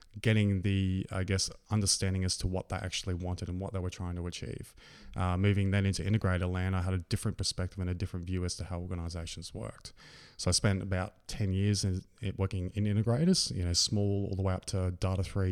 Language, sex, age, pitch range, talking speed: English, male, 20-39, 95-105 Hz, 210 wpm